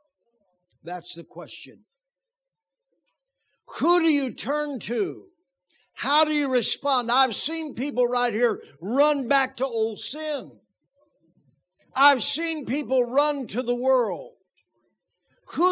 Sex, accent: male, American